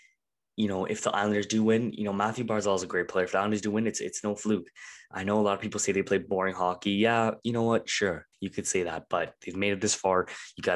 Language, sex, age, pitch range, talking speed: English, male, 20-39, 90-100 Hz, 290 wpm